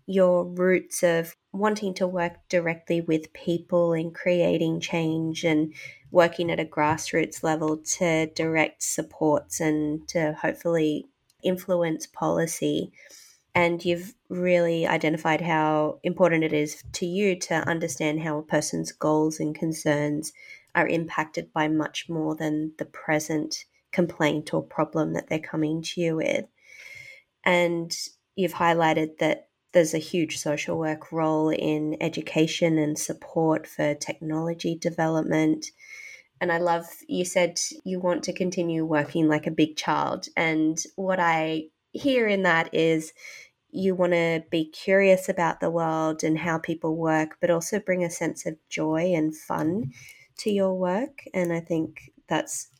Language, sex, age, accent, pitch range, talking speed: English, female, 20-39, Australian, 155-175 Hz, 145 wpm